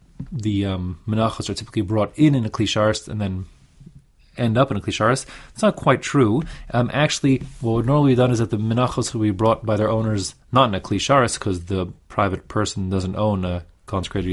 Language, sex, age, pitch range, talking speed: English, male, 30-49, 95-130 Hz, 210 wpm